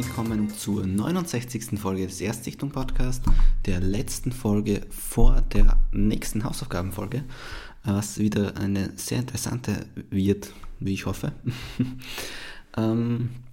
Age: 20-39